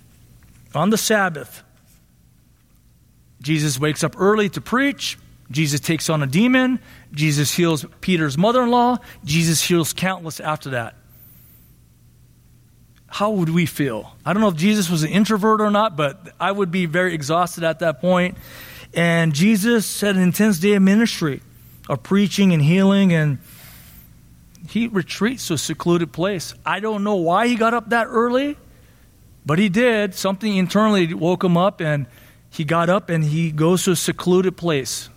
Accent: American